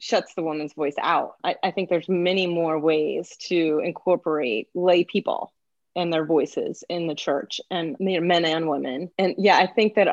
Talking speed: 185 wpm